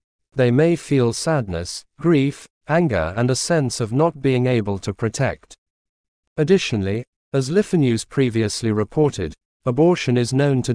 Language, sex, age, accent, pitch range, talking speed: English, male, 50-69, British, 105-140 Hz, 135 wpm